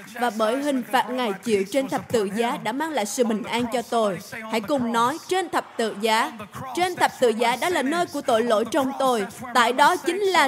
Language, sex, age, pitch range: Vietnamese, female, 20-39, 225-330 Hz